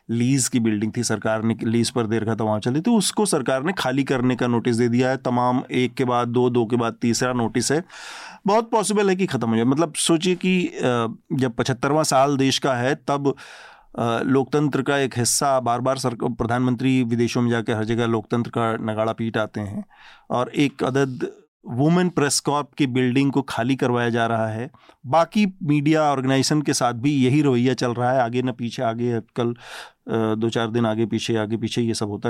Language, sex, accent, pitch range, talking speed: Hindi, male, native, 115-140 Hz, 205 wpm